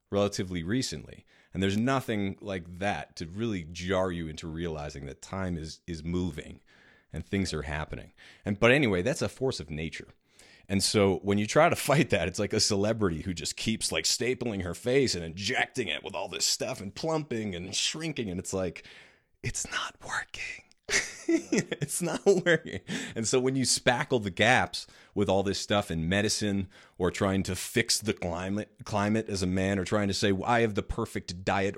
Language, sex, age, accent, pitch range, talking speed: English, male, 30-49, American, 85-110 Hz, 195 wpm